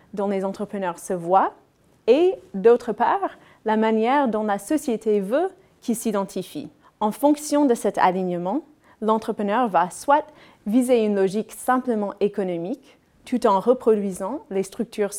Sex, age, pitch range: female, 30-49, 200-265 Hz